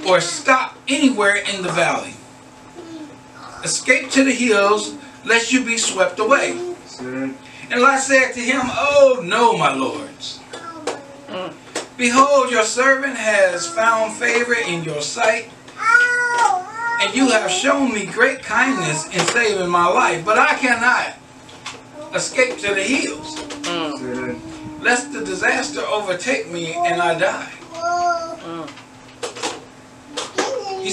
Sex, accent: male, American